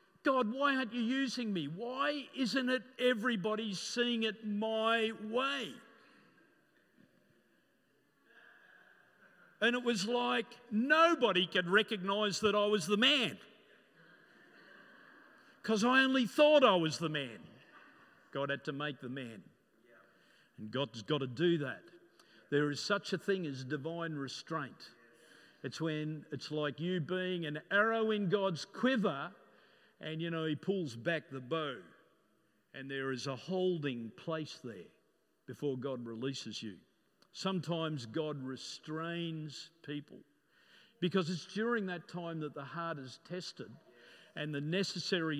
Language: English